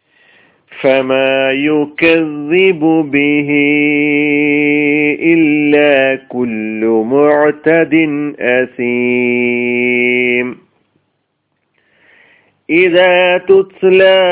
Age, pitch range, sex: 40-59, 145-180 Hz, male